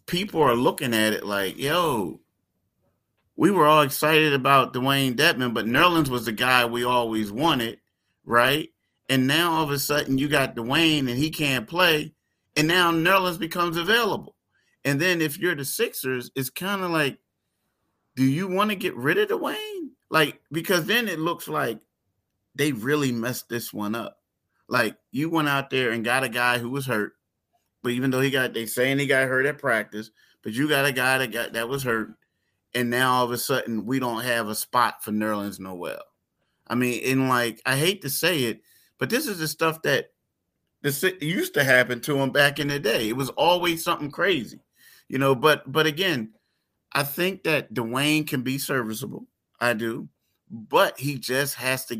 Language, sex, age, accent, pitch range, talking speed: English, male, 30-49, American, 120-155 Hz, 195 wpm